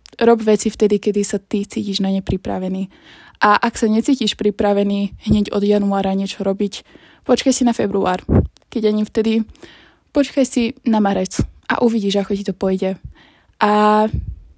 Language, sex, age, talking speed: Slovak, female, 10-29, 155 wpm